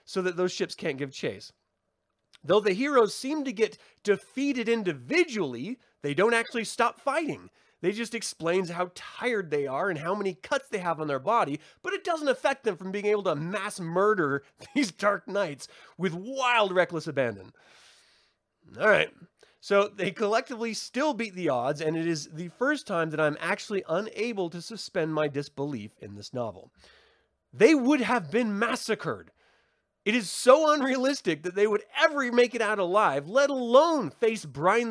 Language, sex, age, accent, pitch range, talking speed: English, male, 30-49, American, 170-265 Hz, 170 wpm